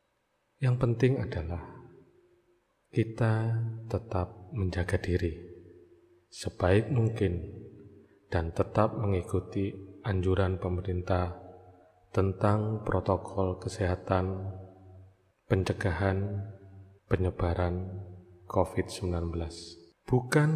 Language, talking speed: Indonesian, 60 wpm